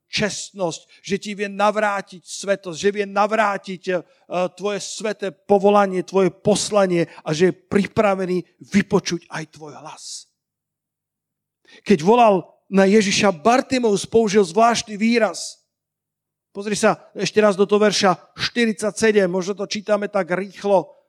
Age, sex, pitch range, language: 50-69, male, 180-215 Hz, Slovak